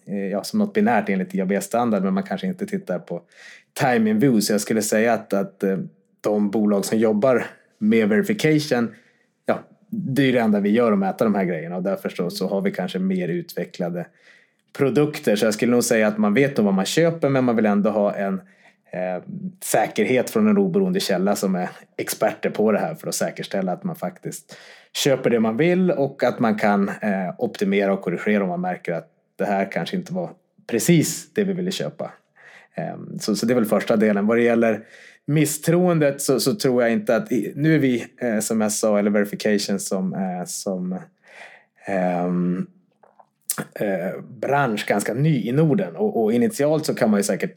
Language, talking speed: Swedish, 195 wpm